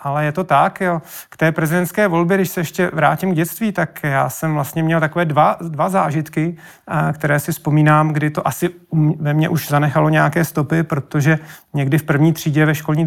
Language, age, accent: Czech, 40-59, native